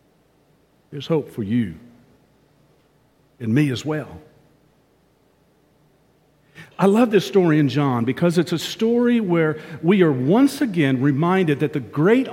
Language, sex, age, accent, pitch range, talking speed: English, male, 50-69, American, 135-195 Hz, 130 wpm